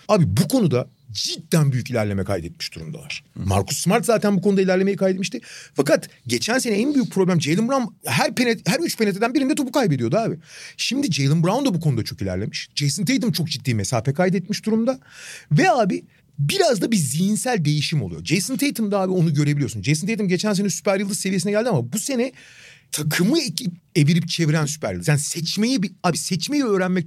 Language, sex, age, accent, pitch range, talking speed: Turkish, male, 40-59, native, 140-210 Hz, 185 wpm